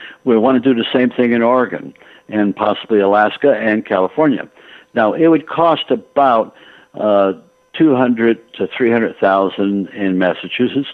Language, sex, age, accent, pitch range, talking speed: English, male, 60-79, American, 95-120 Hz, 145 wpm